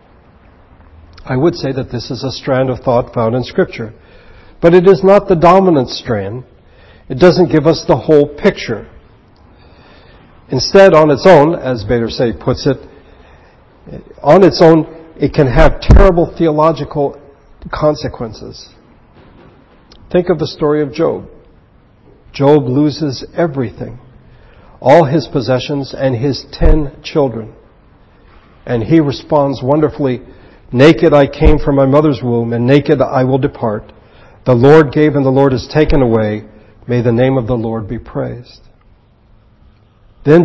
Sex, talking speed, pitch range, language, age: male, 140 wpm, 115-150 Hz, English, 60-79